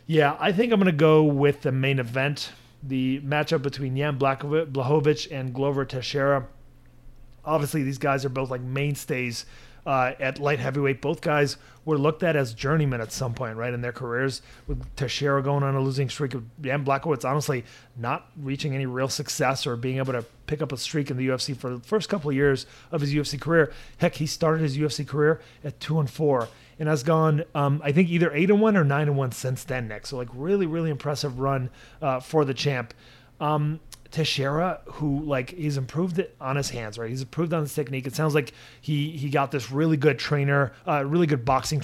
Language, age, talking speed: English, 30-49, 210 wpm